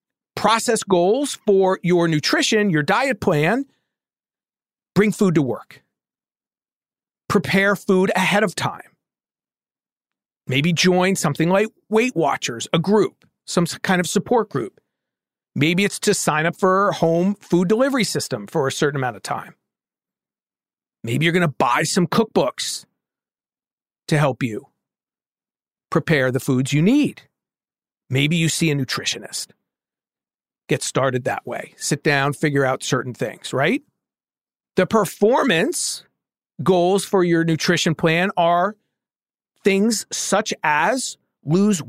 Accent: American